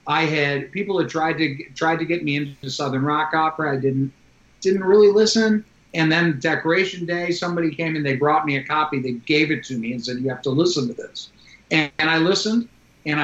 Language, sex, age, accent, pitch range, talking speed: English, male, 50-69, American, 135-165 Hz, 220 wpm